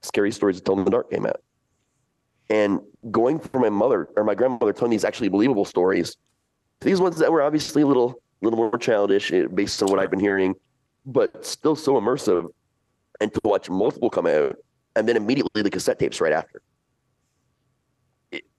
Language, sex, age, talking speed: English, male, 30-49, 185 wpm